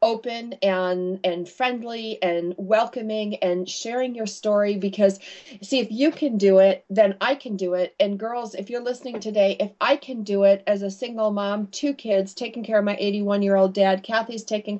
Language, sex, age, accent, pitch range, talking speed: English, female, 40-59, American, 195-225 Hz, 200 wpm